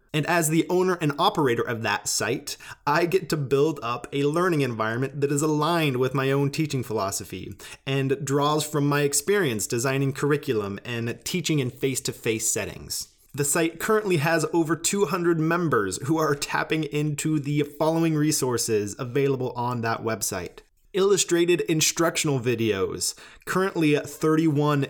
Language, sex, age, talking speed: English, male, 20-39, 145 wpm